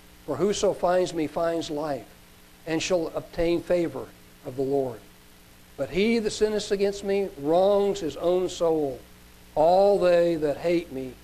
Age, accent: 60-79, American